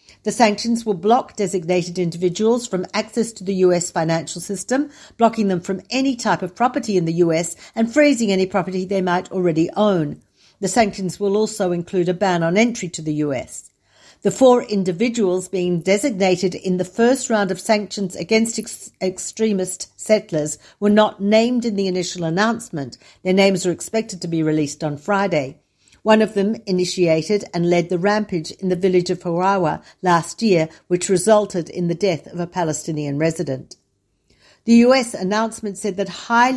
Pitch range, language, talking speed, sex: 175-220 Hz, Hebrew, 170 wpm, female